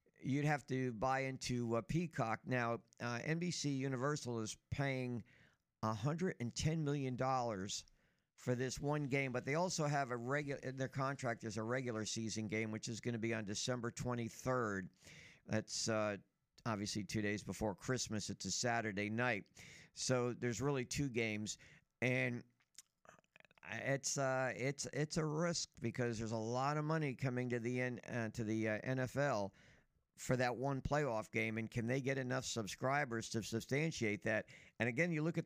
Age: 50-69